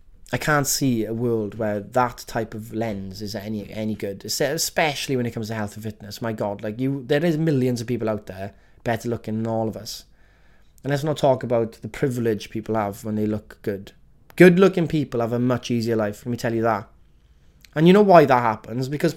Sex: male